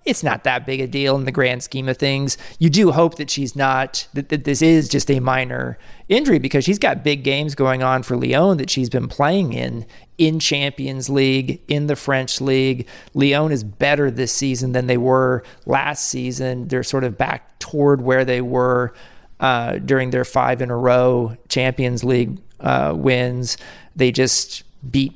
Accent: American